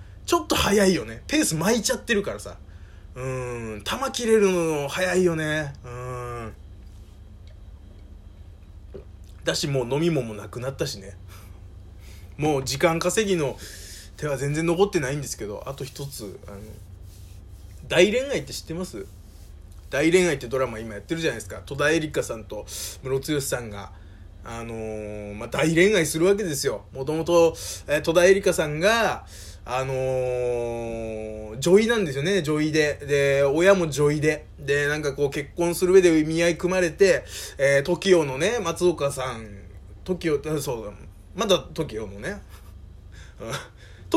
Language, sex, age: Japanese, male, 20-39